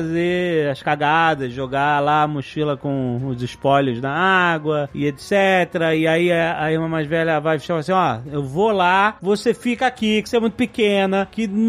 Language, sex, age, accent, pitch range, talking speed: Portuguese, male, 30-49, Brazilian, 160-250 Hz, 190 wpm